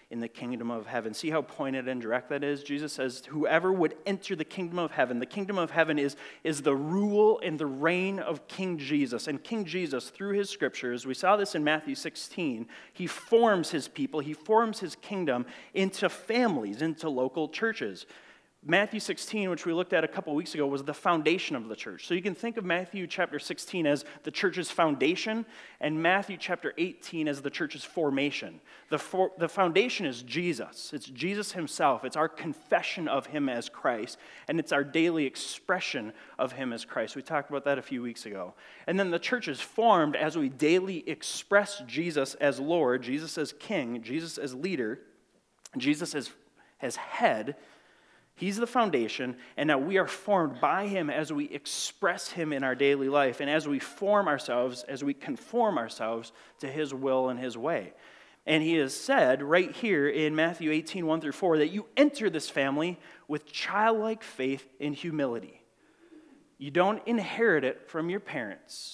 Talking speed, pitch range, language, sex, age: 185 wpm, 140-200 Hz, English, male, 30-49